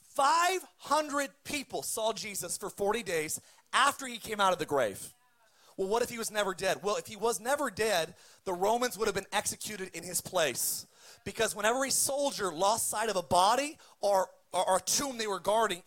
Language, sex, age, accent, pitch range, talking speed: English, male, 30-49, American, 205-265 Hz, 200 wpm